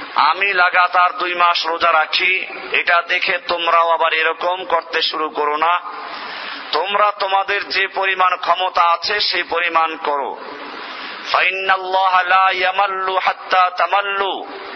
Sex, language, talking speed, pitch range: male, Bengali, 100 wpm, 175-195 Hz